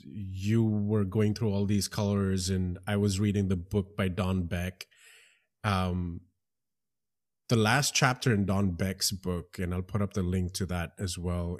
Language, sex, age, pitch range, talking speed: English, male, 30-49, 95-120 Hz, 175 wpm